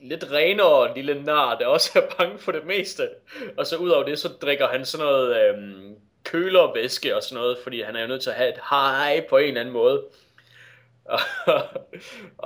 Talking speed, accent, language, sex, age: 210 wpm, native, Danish, male, 20-39